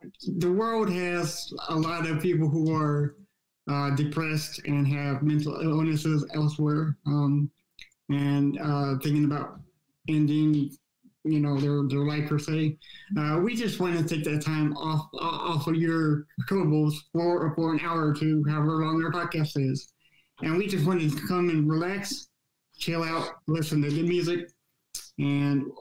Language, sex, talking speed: English, male, 160 wpm